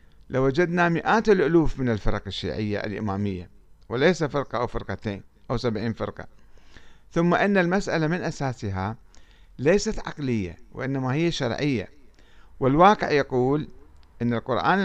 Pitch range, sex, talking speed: 100-145 Hz, male, 115 wpm